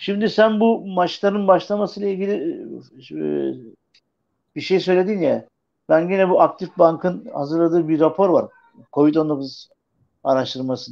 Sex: male